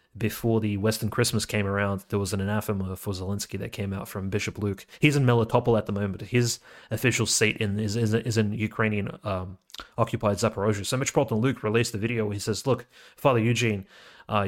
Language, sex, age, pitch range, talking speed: English, male, 30-49, 105-115 Hz, 205 wpm